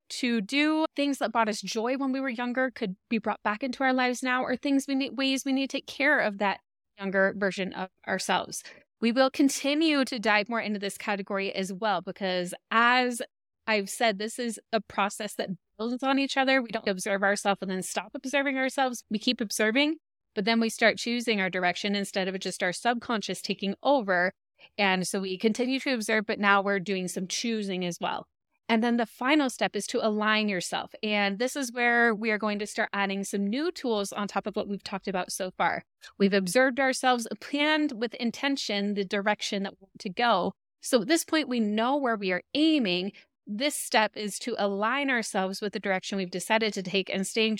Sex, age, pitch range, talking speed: female, 20-39, 200-255 Hz, 210 wpm